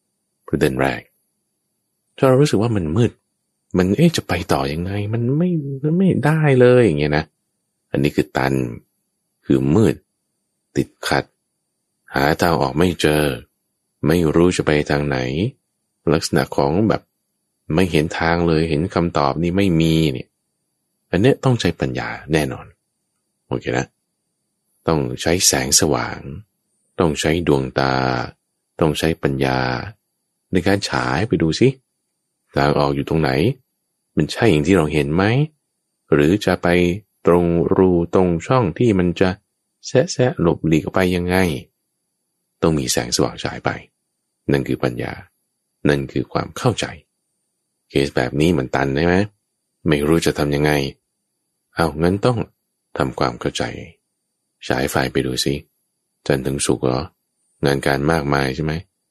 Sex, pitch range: male, 70-95 Hz